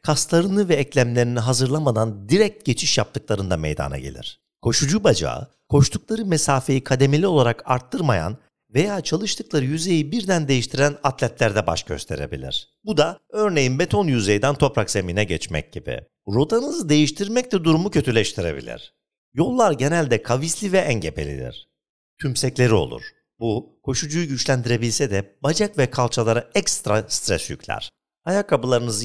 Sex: male